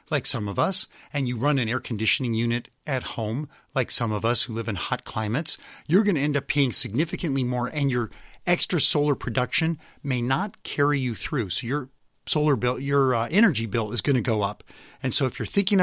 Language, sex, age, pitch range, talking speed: English, male, 40-59, 115-150 Hz, 220 wpm